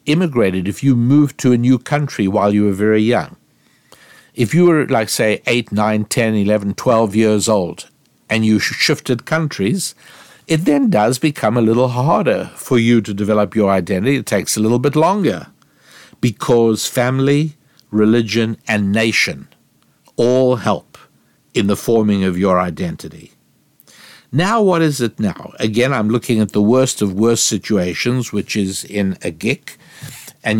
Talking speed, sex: 160 wpm, male